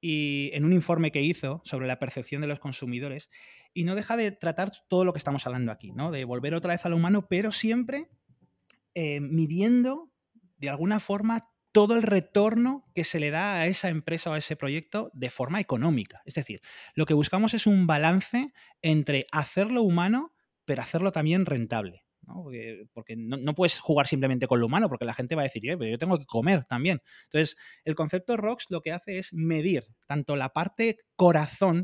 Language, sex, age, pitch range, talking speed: Spanish, male, 30-49, 140-185 Hz, 200 wpm